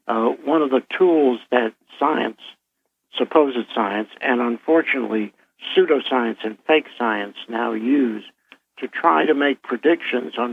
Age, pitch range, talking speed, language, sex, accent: 60-79, 110-135 Hz, 130 wpm, English, male, American